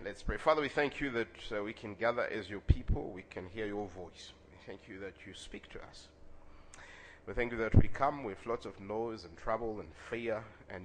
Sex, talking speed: male, 230 wpm